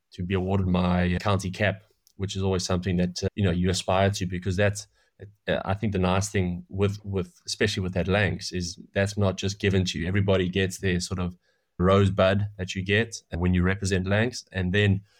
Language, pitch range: English, 90-100 Hz